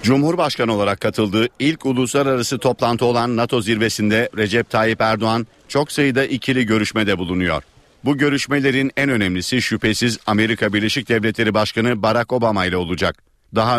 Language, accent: Turkish, native